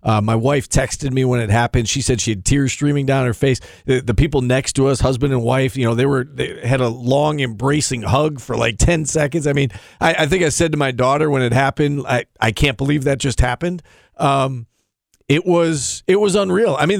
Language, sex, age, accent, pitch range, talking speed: English, male, 40-59, American, 125-145 Hz, 240 wpm